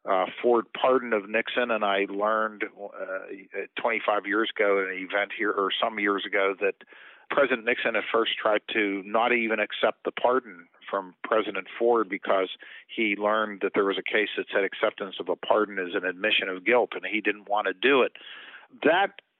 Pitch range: 105-120 Hz